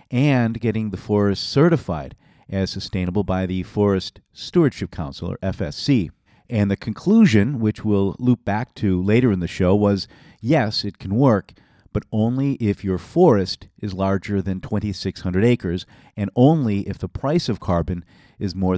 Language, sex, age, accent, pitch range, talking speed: English, male, 40-59, American, 95-120 Hz, 160 wpm